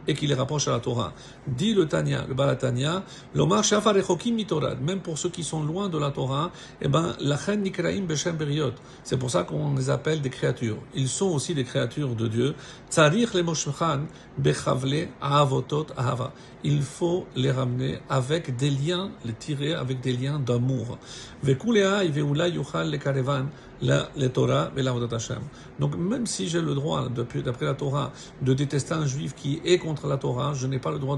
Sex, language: male, French